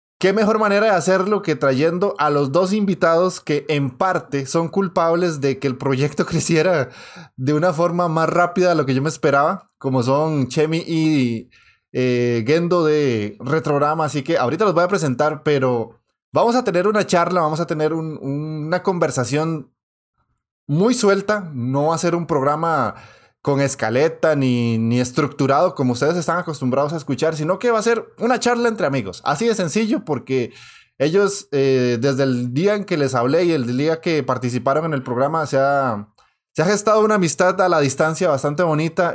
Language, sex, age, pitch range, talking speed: Spanish, male, 20-39, 140-185 Hz, 185 wpm